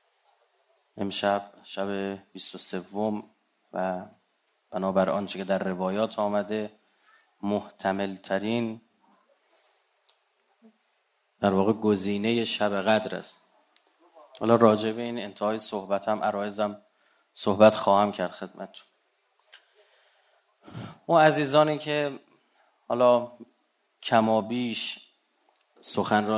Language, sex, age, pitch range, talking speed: Persian, male, 30-49, 105-135 Hz, 75 wpm